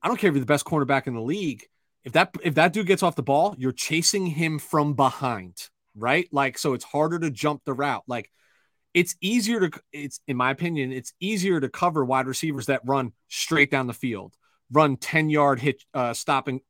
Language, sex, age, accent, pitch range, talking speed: English, male, 30-49, American, 130-165 Hz, 215 wpm